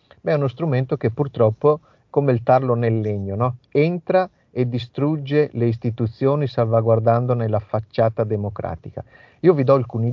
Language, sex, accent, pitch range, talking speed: Italian, male, native, 115-145 Hz, 140 wpm